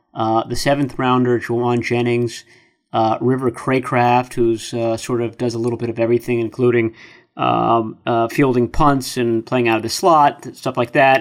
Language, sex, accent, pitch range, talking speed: English, male, American, 120-135 Hz, 175 wpm